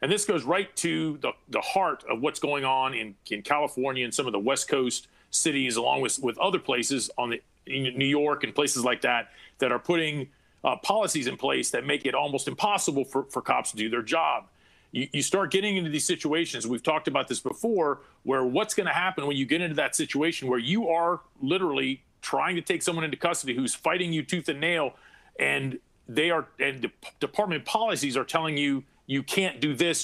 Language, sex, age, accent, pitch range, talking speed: English, male, 40-59, American, 135-175 Hz, 215 wpm